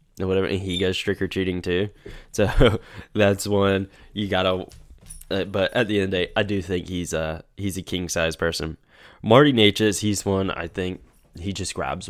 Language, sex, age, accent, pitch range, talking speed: English, male, 10-29, American, 90-110 Hz, 200 wpm